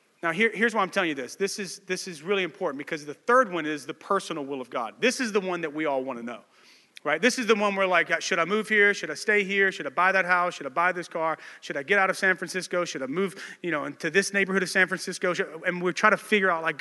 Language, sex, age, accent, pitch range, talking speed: English, male, 30-49, American, 170-210 Hz, 280 wpm